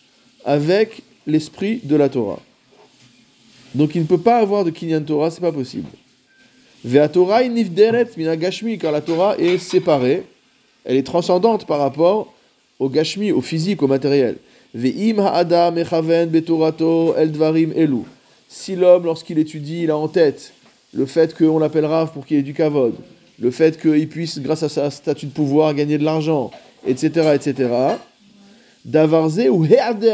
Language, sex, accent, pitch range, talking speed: French, male, French, 155-200 Hz, 160 wpm